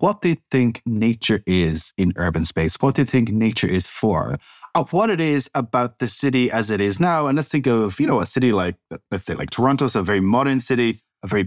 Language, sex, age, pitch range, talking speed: English, male, 20-39, 100-130 Hz, 235 wpm